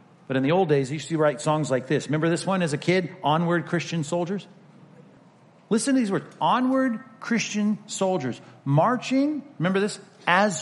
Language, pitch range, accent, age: English, 150-195 Hz, American, 50-69